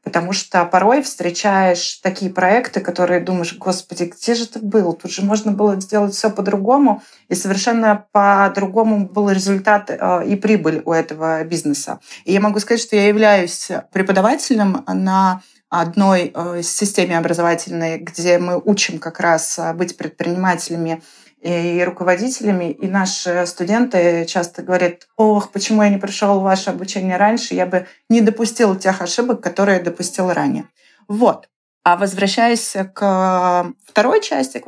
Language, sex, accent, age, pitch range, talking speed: Russian, female, native, 30-49, 180-210 Hz, 140 wpm